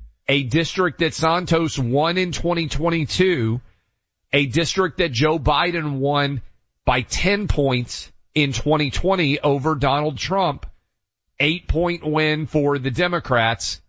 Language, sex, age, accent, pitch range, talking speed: English, male, 40-59, American, 120-165 Hz, 110 wpm